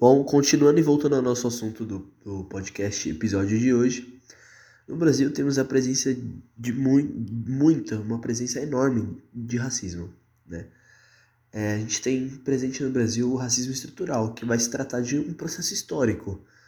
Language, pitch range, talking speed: Portuguese, 115-135 Hz, 155 wpm